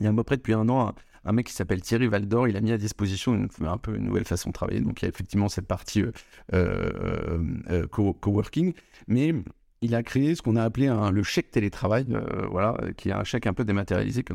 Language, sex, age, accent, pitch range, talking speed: French, male, 30-49, French, 95-120 Hz, 255 wpm